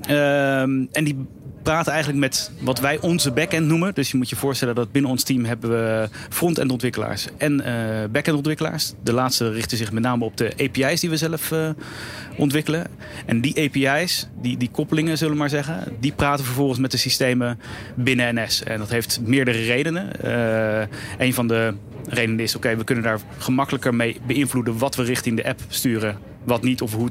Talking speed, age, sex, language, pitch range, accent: 195 wpm, 30-49, male, Dutch, 120-140 Hz, Dutch